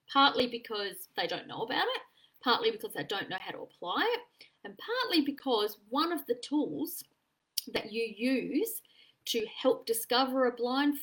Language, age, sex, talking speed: English, 30-49, female, 170 wpm